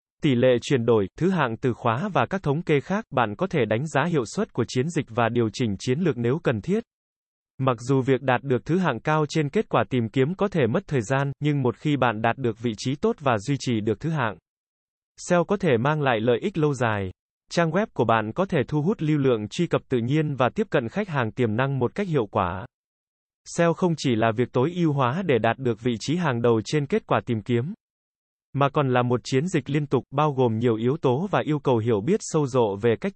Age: 20-39